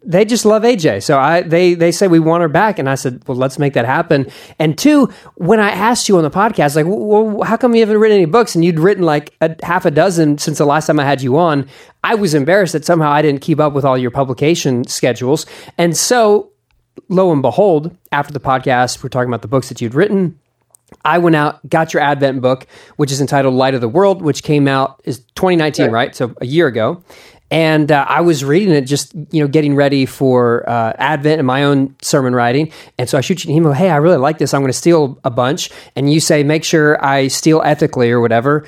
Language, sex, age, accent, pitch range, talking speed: English, male, 30-49, American, 135-175 Hz, 245 wpm